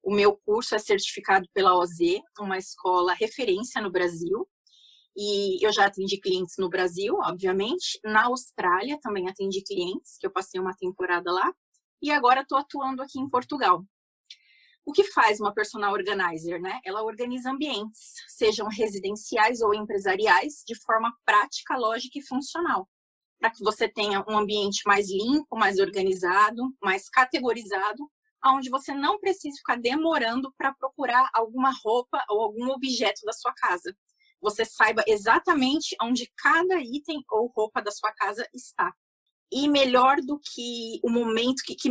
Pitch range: 200-275 Hz